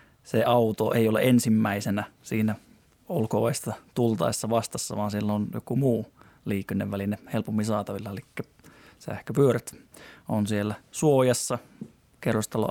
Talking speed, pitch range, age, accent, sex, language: 110 wpm, 100-115 Hz, 20-39, native, male, Finnish